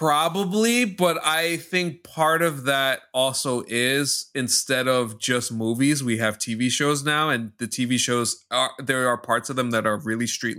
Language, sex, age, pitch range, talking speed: English, male, 20-39, 120-160 Hz, 180 wpm